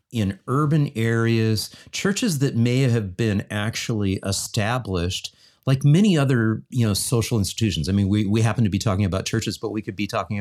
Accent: American